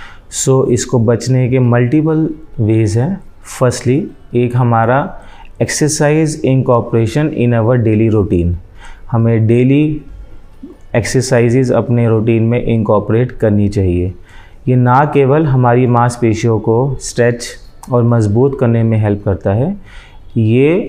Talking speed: 120 wpm